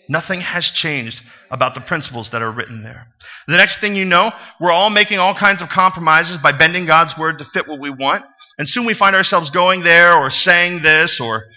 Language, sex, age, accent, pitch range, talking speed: English, male, 40-59, American, 145-190 Hz, 220 wpm